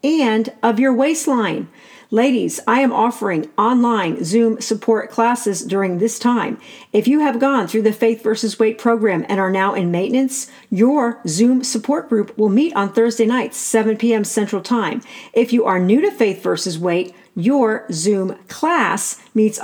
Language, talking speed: English, 170 wpm